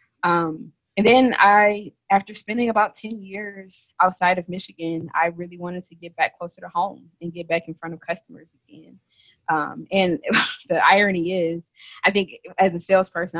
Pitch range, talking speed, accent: 165-185 Hz, 175 wpm, American